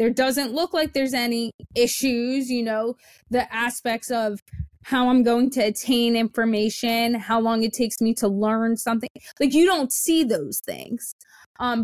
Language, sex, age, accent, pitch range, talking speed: English, female, 20-39, American, 210-245 Hz, 165 wpm